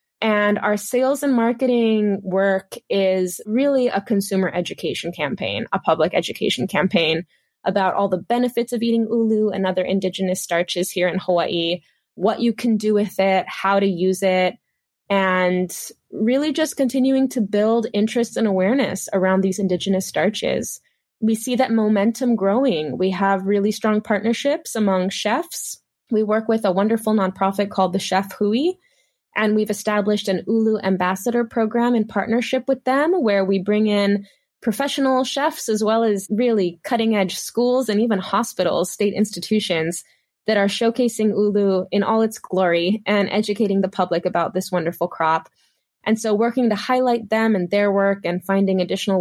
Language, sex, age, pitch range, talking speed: English, female, 20-39, 190-235 Hz, 160 wpm